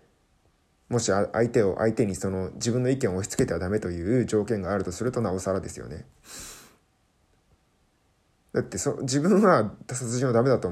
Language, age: Japanese, 20-39